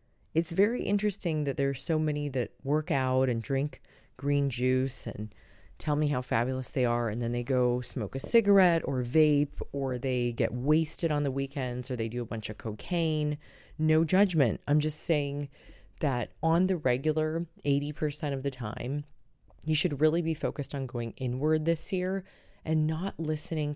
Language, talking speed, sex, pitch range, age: English, 175 wpm, female, 120-155 Hz, 20-39